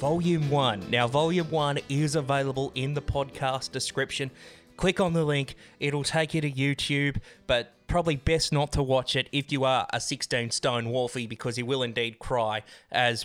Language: English